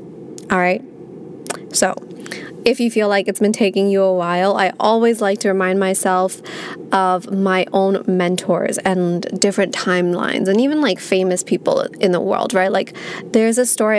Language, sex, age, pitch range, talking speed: English, female, 20-39, 180-215 Hz, 165 wpm